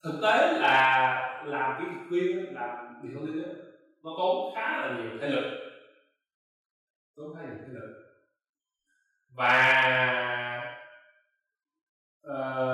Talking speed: 115 wpm